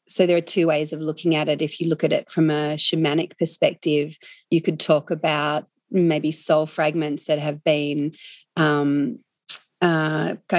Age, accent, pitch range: 40-59, Australian, 155-175 Hz